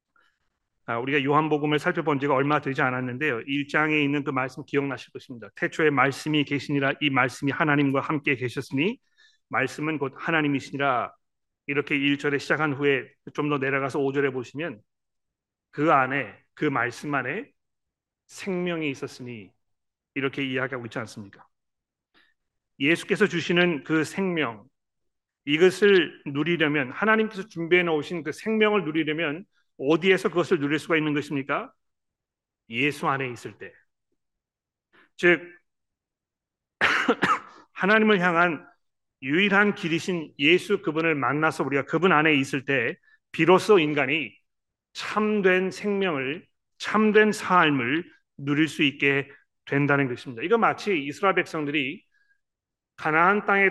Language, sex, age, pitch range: Korean, male, 40-59, 140-180 Hz